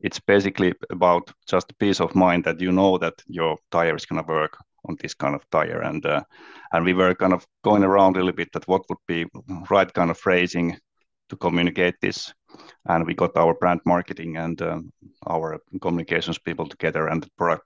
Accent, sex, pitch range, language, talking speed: Finnish, male, 85-100 Hz, English, 200 wpm